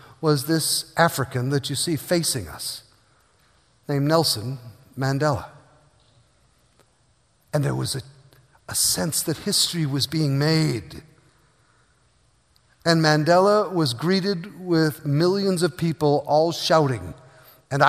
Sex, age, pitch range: male, 50-69, 150-205 Hz